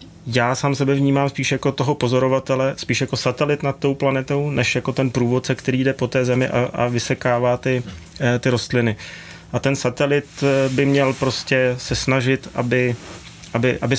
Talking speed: 165 wpm